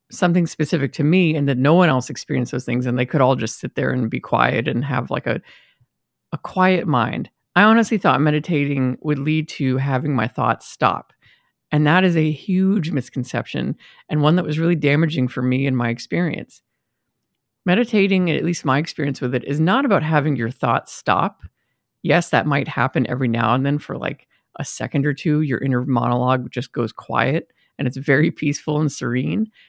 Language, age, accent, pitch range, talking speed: English, 50-69, American, 130-175 Hz, 195 wpm